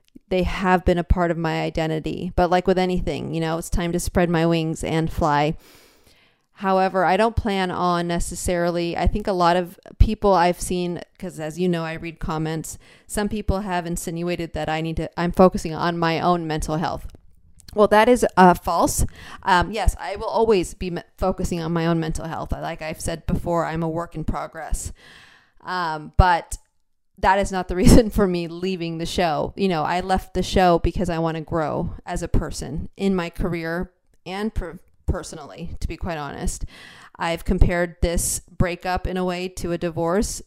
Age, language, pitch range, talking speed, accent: 30-49, English, 165-190 Hz, 195 wpm, American